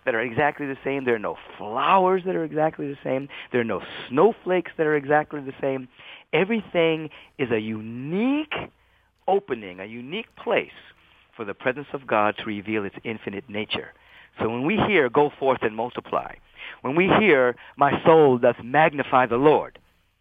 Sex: male